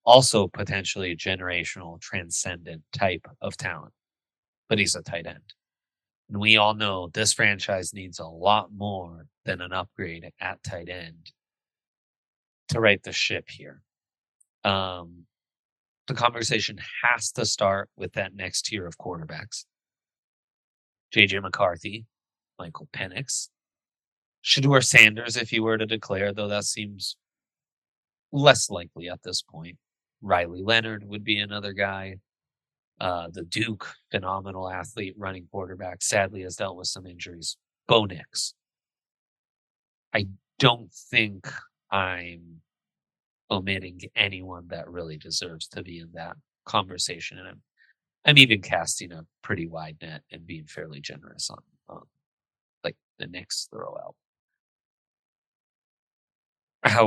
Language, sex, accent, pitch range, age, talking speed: English, male, American, 85-105 Hz, 30-49, 125 wpm